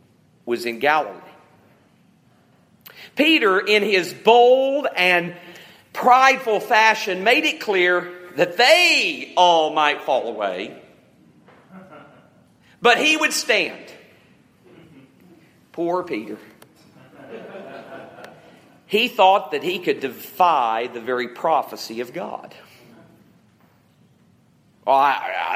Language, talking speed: English, 90 wpm